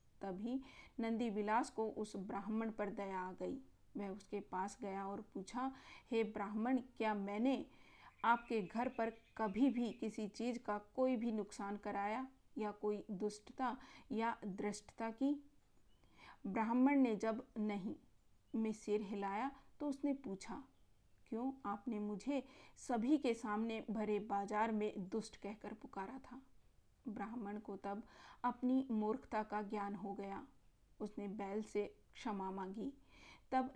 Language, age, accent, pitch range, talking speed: Hindi, 40-59, native, 205-245 Hz, 75 wpm